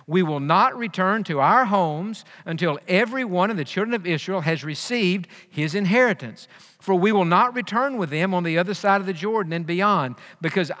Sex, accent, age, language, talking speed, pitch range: male, American, 50-69, English, 200 wpm, 165-220 Hz